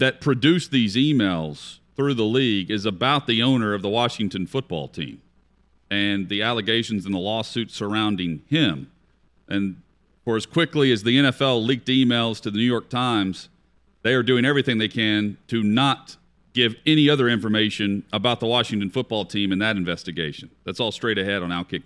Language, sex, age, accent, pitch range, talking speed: English, male, 40-59, American, 105-140 Hz, 175 wpm